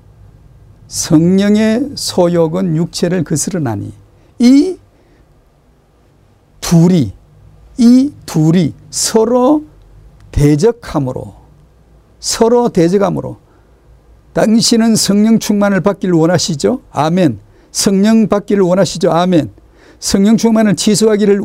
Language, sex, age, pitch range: Korean, male, 50-69, 145-215 Hz